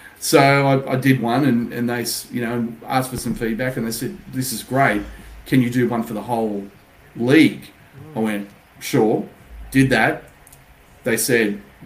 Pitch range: 105-125 Hz